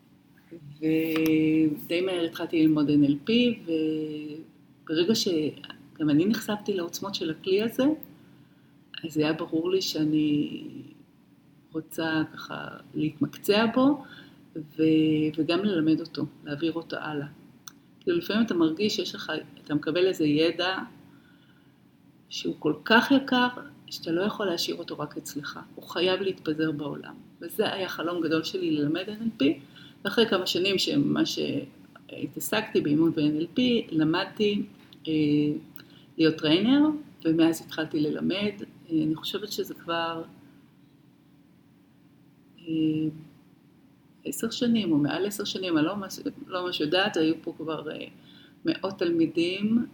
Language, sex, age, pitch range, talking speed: Hebrew, female, 50-69, 155-205 Hz, 115 wpm